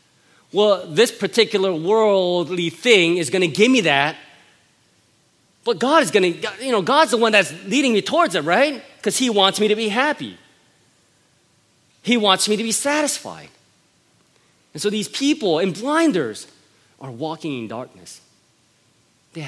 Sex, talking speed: male, 155 wpm